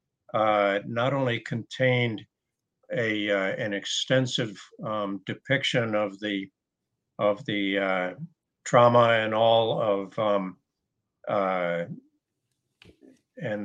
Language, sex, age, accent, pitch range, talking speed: English, male, 60-79, American, 105-130 Hz, 95 wpm